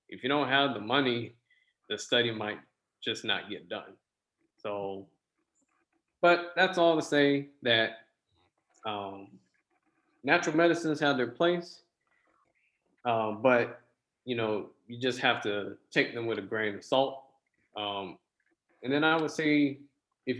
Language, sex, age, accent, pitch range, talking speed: English, male, 20-39, American, 105-135 Hz, 140 wpm